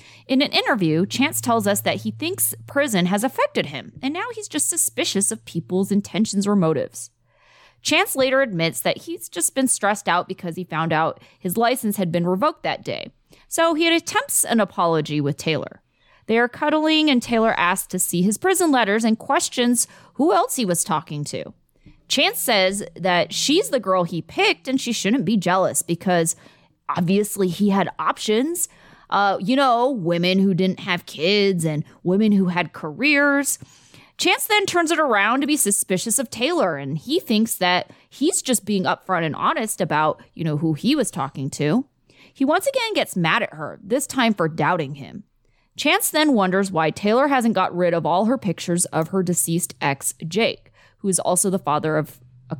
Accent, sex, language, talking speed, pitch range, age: American, female, English, 185 wpm, 170-265 Hz, 20-39